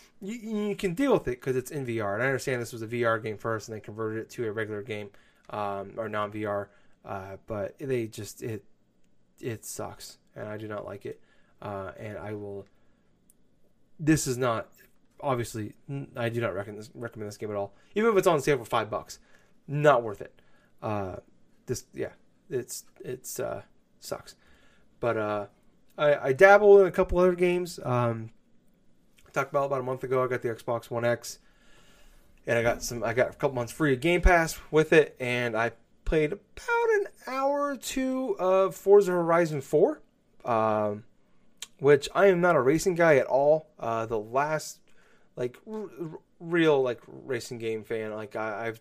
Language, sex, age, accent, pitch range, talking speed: English, male, 20-39, American, 110-165 Hz, 190 wpm